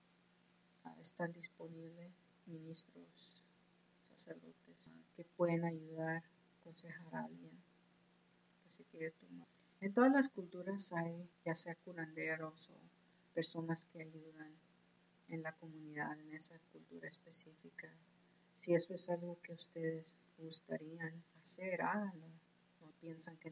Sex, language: female, English